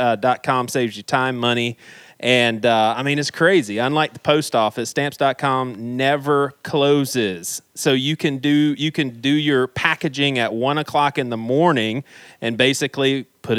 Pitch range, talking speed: 115-145 Hz, 165 wpm